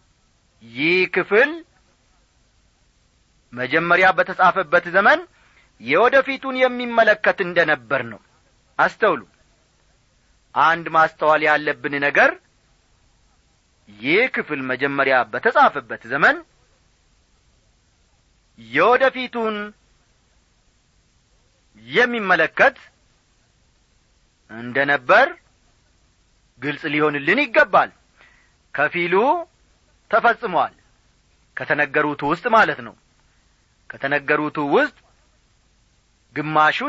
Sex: male